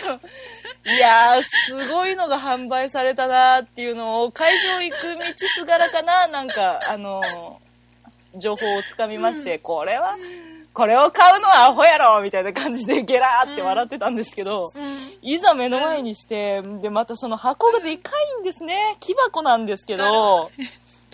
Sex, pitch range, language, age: female, 200-320 Hz, Japanese, 20-39